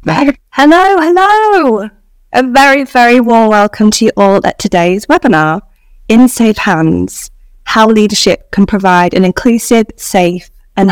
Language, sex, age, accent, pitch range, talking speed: English, female, 10-29, British, 175-210 Hz, 130 wpm